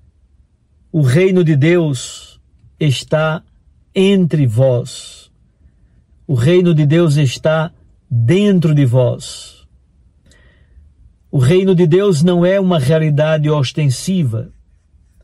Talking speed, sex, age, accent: 95 wpm, male, 60-79, Brazilian